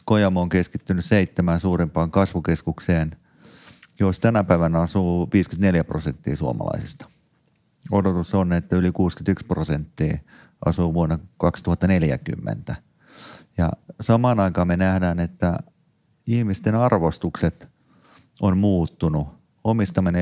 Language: Finnish